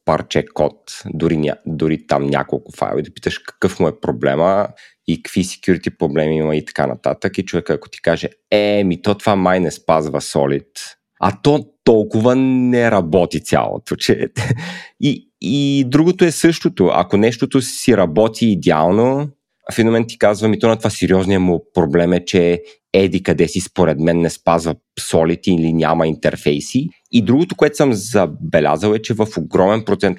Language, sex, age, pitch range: Bulgarian, male, 30-49, 85-125 Hz